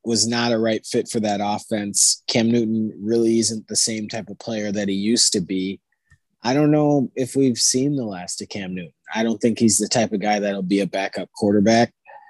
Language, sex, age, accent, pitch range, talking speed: English, male, 20-39, American, 100-115 Hz, 225 wpm